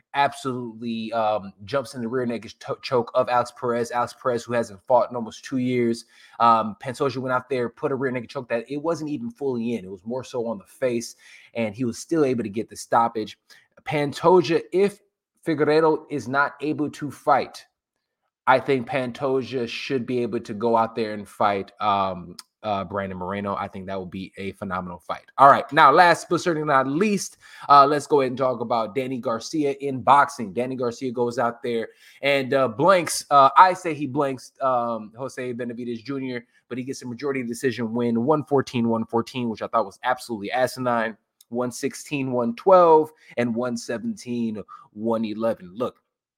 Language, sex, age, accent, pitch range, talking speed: English, male, 20-39, American, 115-135 Hz, 180 wpm